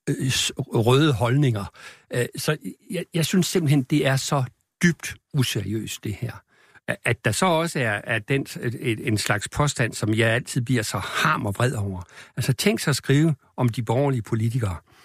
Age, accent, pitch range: 60-79, native, 120-155 Hz